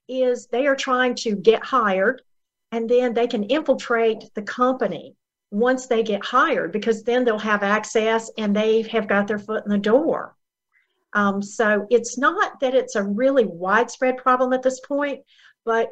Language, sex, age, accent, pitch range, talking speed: English, female, 50-69, American, 205-250 Hz, 175 wpm